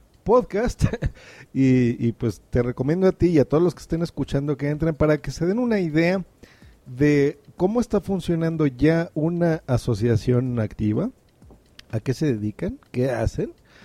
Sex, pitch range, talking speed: male, 125-160 Hz, 160 wpm